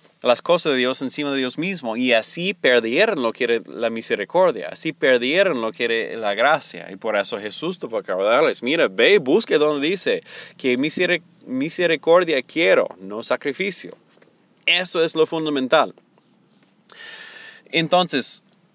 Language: Spanish